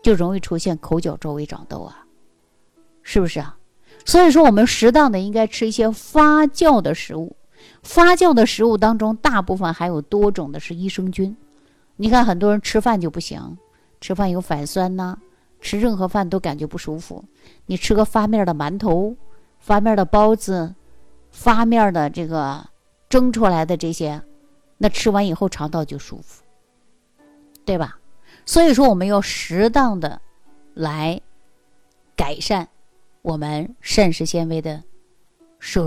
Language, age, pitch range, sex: Chinese, 50-69, 165-230 Hz, female